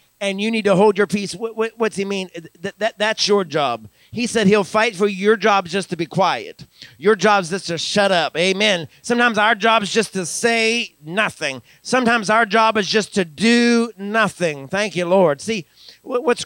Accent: American